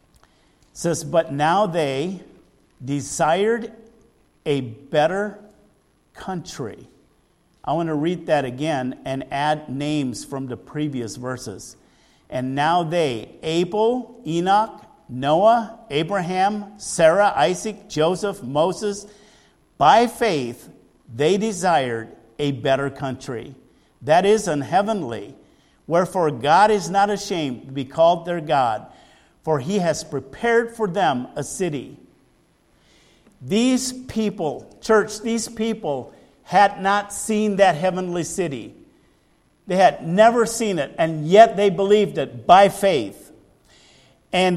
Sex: male